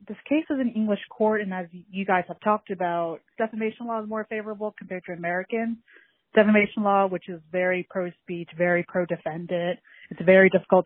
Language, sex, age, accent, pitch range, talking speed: English, female, 30-49, American, 175-215 Hz, 175 wpm